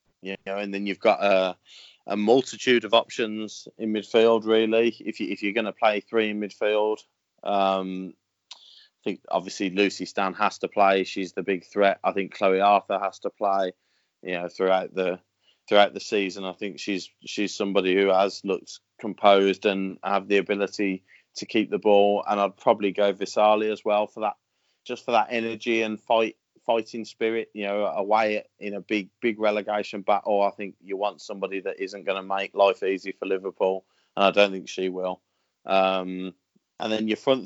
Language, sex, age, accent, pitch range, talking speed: English, male, 20-39, British, 95-110 Hz, 190 wpm